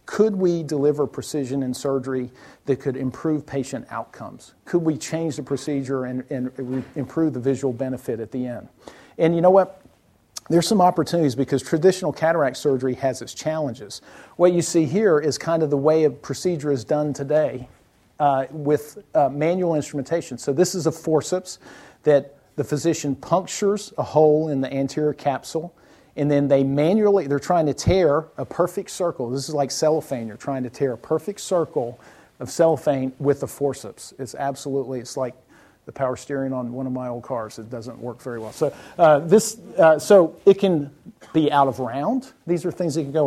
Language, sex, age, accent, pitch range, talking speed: English, male, 50-69, American, 135-170 Hz, 185 wpm